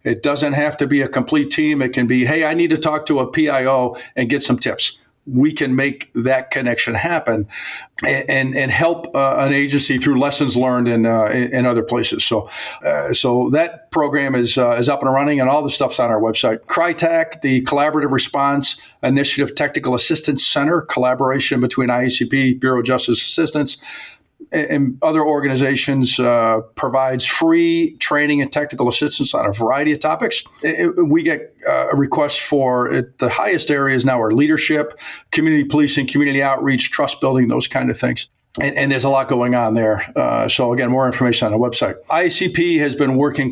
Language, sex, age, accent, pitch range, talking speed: English, male, 50-69, American, 125-155 Hz, 185 wpm